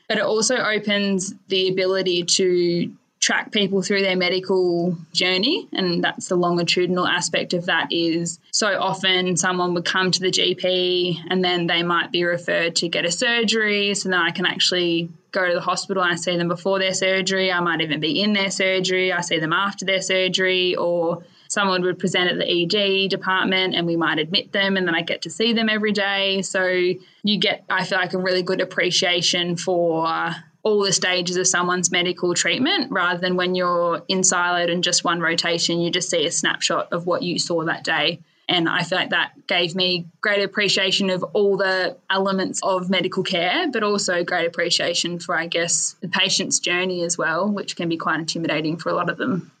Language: English